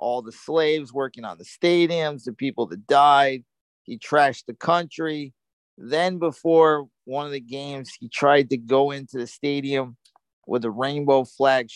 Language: English